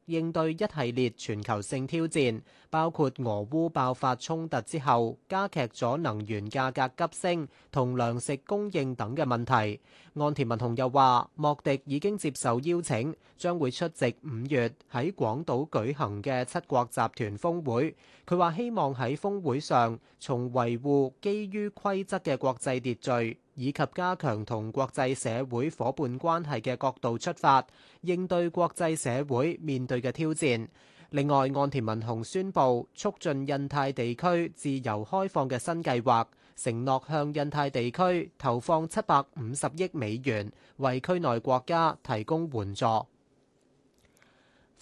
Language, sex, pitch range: Chinese, male, 120-160 Hz